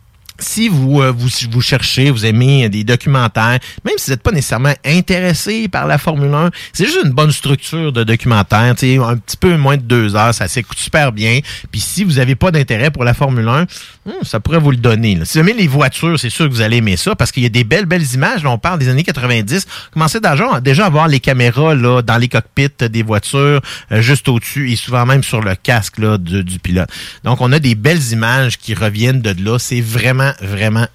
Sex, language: male, French